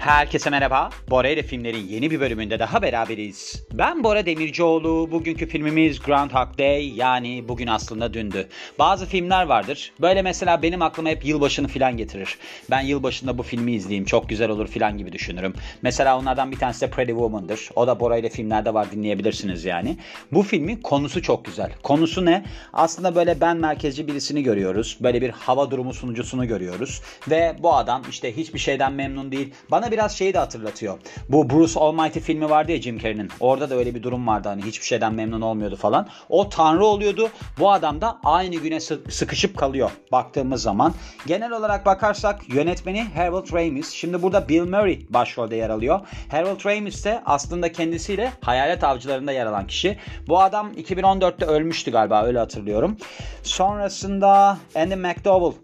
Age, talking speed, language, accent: 40-59, 165 wpm, Turkish, native